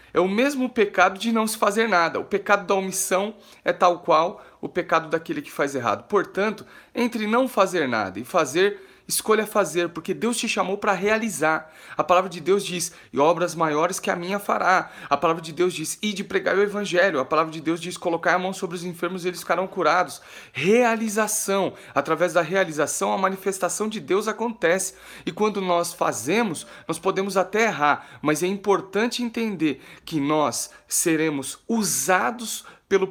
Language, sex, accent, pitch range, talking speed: Portuguese, male, Brazilian, 170-220 Hz, 180 wpm